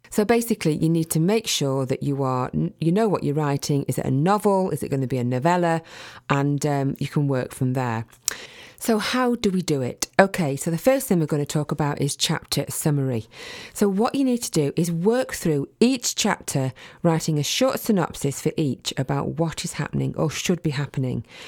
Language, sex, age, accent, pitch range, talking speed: English, female, 40-59, British, 140-180 Hz, 210 wpm